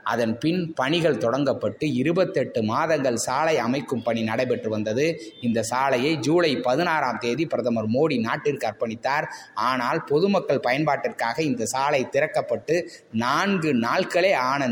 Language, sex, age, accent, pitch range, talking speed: Tamil, male, 20-39, native, 120-175 Hz, 120 wpm